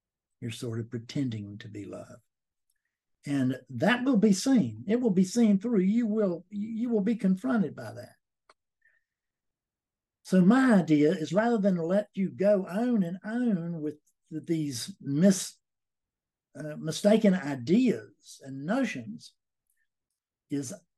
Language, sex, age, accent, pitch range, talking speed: English, male, 60-79, American, 140-200 Hz, 130 wpm